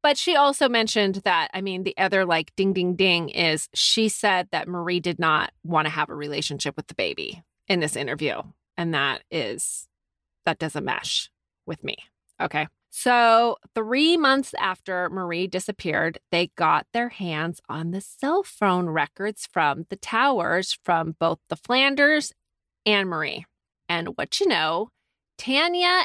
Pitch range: 170-235 Hz